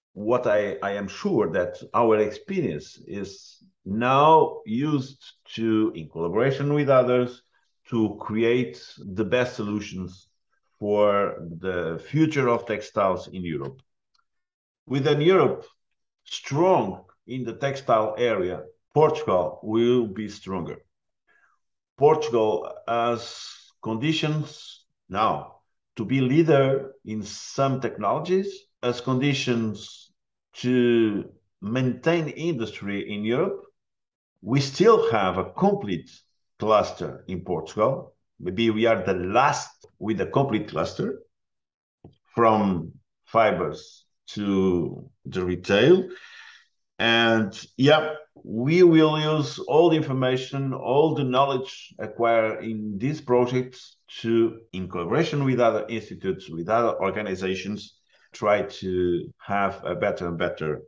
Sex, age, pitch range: male, 50-69, 105-145 Hz